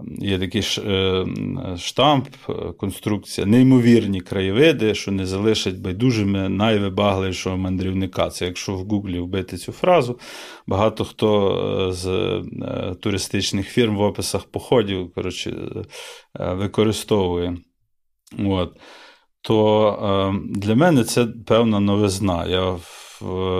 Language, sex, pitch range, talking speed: Ukrainian, male, 95-110 Hz, 95 wpm